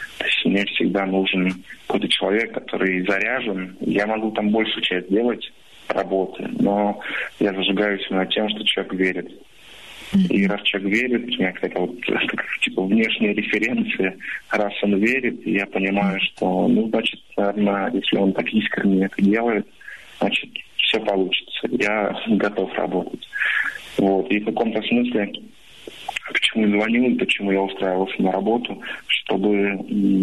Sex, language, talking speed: male, Russian, 140 wpm